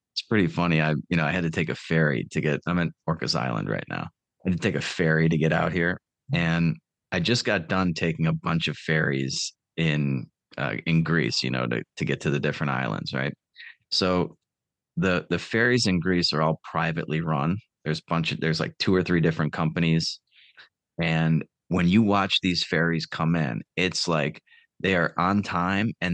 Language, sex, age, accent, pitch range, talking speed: English, male, 30-49, American, 80-90 Hz, 205 wpm